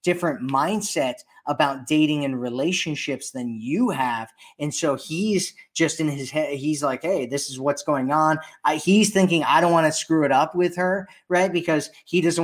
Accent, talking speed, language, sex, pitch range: American, 190 wpm, English, male, 140-165 Hz